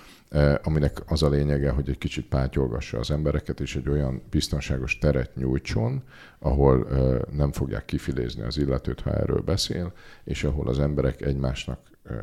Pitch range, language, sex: 65-75 Hz, Hungarian, male